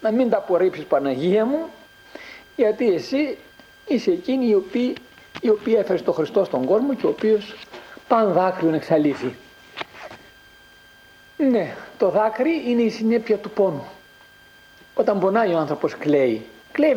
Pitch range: 175-235 Hz